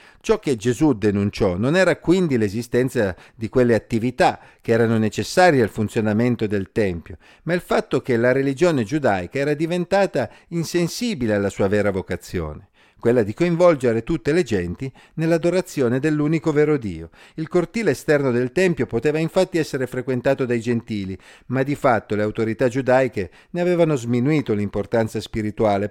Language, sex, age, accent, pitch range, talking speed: Italian, male, 50-69, native, 105-150 Hz, 150 wpm